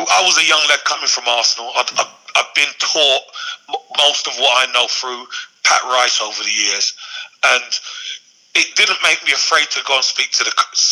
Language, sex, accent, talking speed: English, male, British, 200 wpm